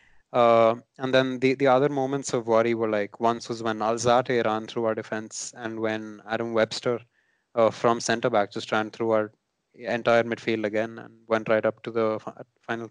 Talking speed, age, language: 190 wpm, 20-39, English